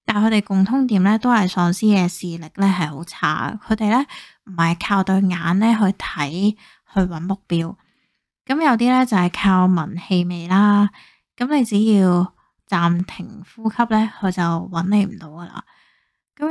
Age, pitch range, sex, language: 10-29, 180-225 Hz, female, Chinese